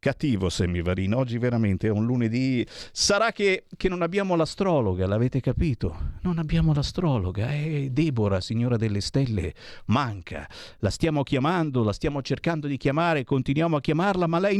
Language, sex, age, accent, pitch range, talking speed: Italian, male, 50-69, native, 105-160 Hz, 150 wpm